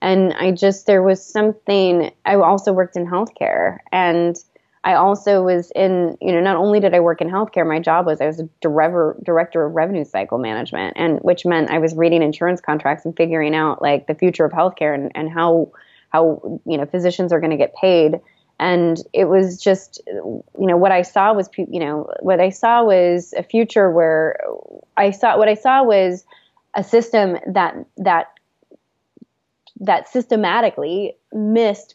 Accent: American